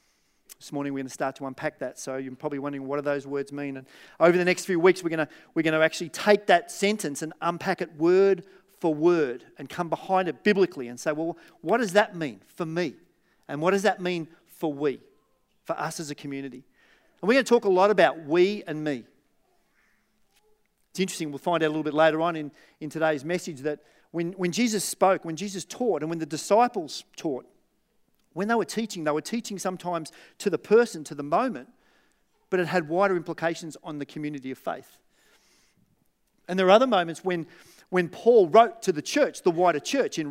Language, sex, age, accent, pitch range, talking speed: English, male, 40-59, Australian, 155-200 Hz, 215 wpm